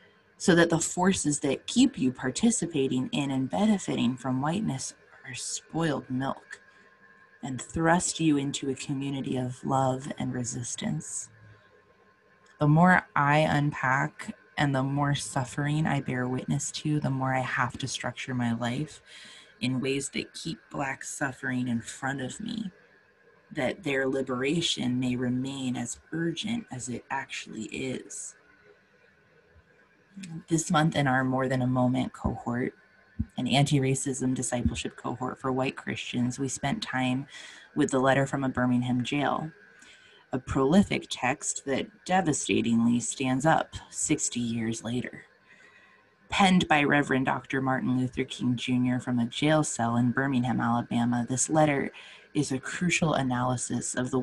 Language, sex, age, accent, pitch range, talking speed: English, female, 20-39, American, 125-150 Hz, 140 wpm